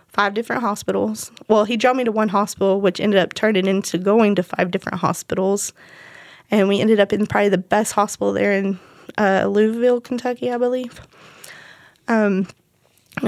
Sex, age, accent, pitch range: female, 10-29, American, 210-245 Hz